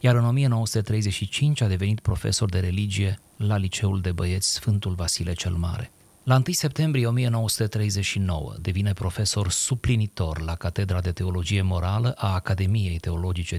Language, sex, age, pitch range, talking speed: Romanian, male, 30-49, 95-115 Hz, 135 wpm